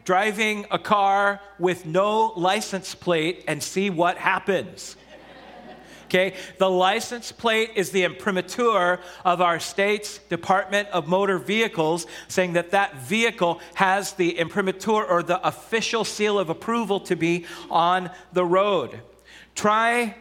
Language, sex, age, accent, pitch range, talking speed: English, male, 40-59, American, 170-210 Hz, 130 wpm